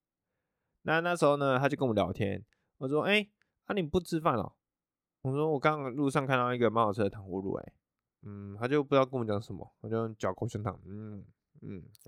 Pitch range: 100-145 Hz